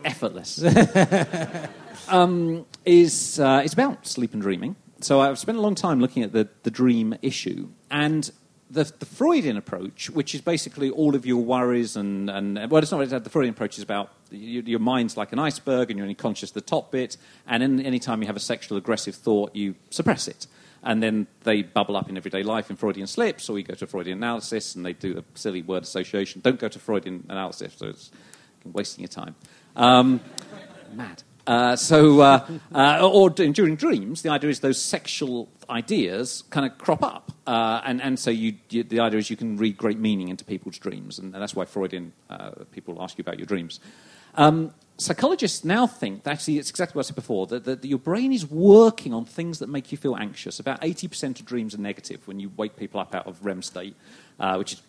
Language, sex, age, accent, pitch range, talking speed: English, male, 40-59, British, 100-155 Hz, 210 wpm